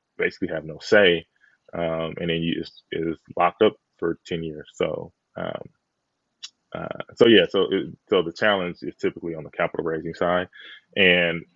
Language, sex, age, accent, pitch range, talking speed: English, male, 20-39, American, 85-105 Hz, 160 wpm